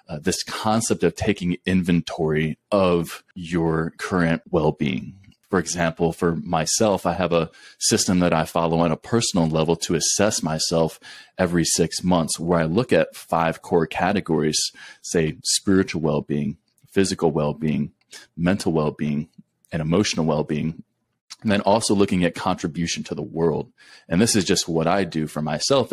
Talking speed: 155 wpm